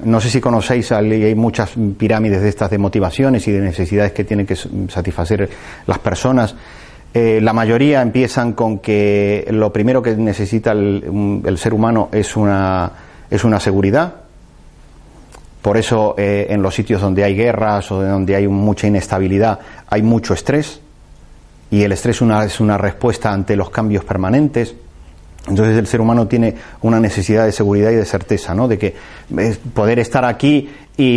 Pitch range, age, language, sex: 100-115 Hz, 30-49, Spanish, male